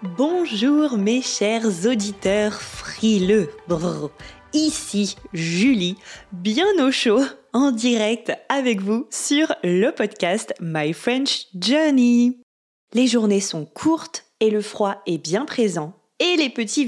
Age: 20-39